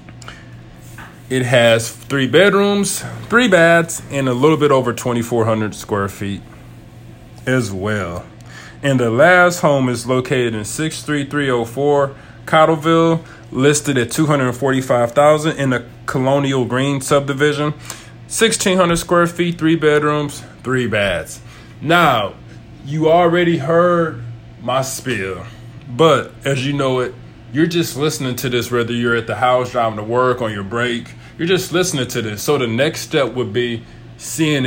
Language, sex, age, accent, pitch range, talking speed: English, male, 20-39, American, 120-145 Hz, 135 wpm